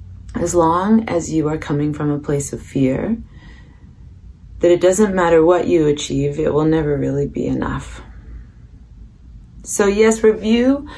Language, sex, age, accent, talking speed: English, female, 30-49, American, 150 wpm